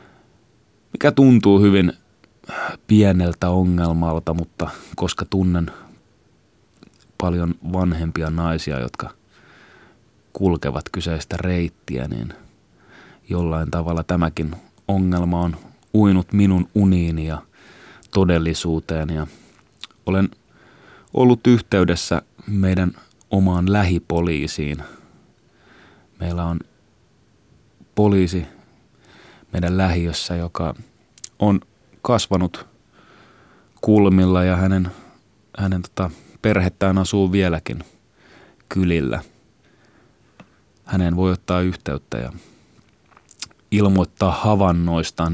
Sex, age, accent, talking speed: male, 30-49, native, 75 wpm